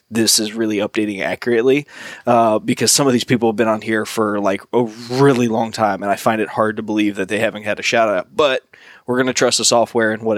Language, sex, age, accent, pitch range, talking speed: English, male, 20-39, American, 105-120 Hz, 255 wpm